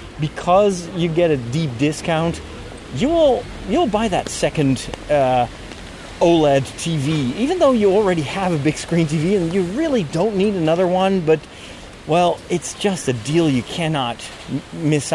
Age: 30-49